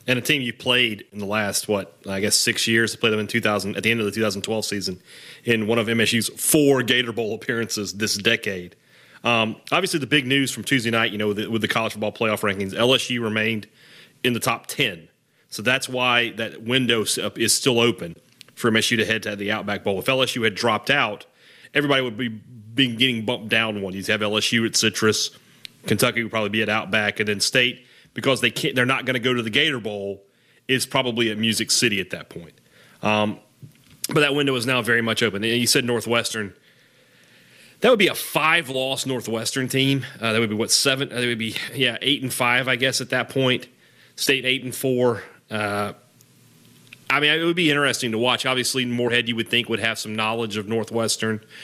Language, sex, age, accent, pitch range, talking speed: English, male, 30-49, American, 110-130 Hz, 215 wpm